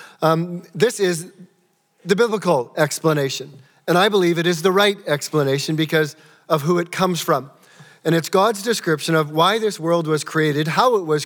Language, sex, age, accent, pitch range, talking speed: English, male, 40-59, American, 160-195 Hz, 170 wpm